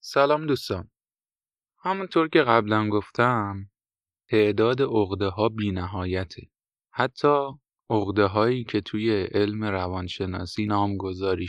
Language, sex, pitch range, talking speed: Persian, male, 95-115 Hz, 100 wpm